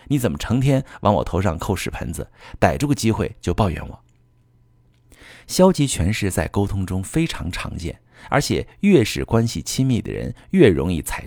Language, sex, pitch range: Chinese, male, 90-120 Hz